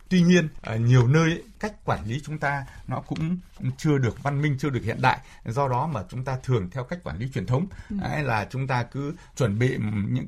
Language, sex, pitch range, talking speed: Vietnamese, male, 120-155 Hz, 230 wpm